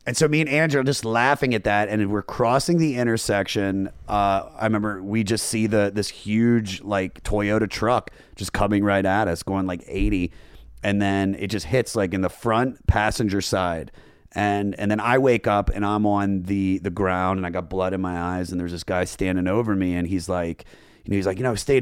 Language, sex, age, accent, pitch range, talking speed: English, male, 30-49, American, 95-115 Hz, 225 wpm